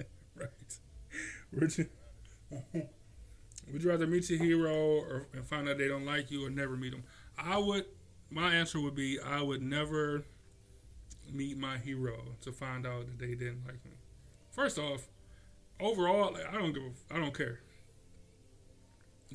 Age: 20-39